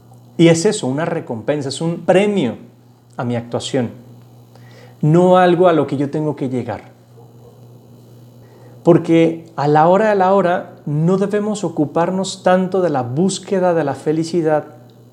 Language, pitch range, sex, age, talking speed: Spanish, 120-180 Hz, male, 40-59, 145 wpm